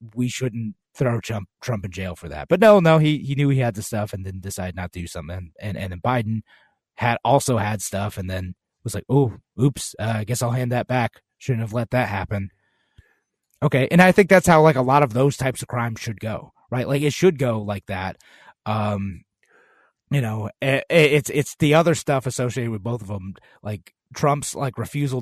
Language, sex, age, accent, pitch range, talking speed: English, male, 30-49, American, 105-135 Hz, 220 wpm